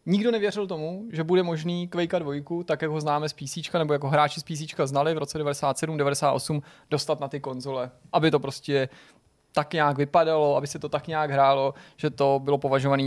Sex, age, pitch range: male, 20-39, 145-180 Hz